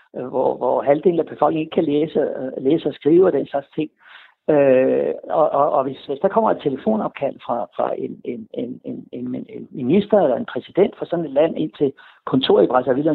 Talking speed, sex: 200 wpm, male